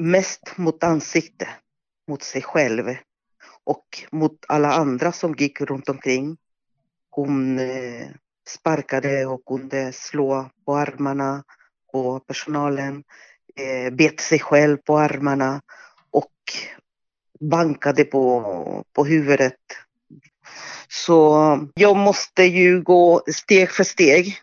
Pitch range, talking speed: 140-180 Hz, 100 wpm